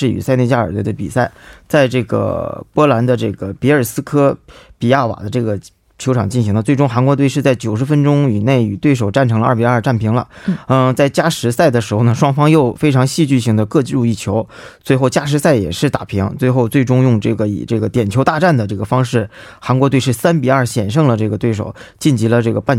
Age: 20-39